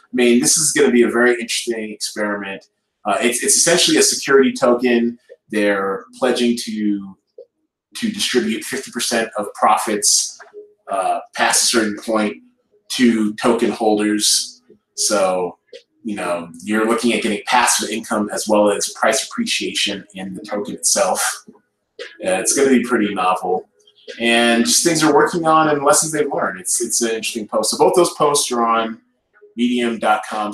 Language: English